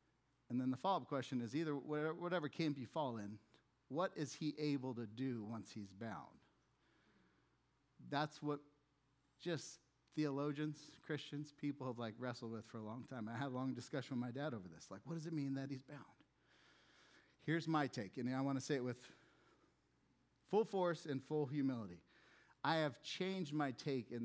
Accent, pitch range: American, 120-155 Hz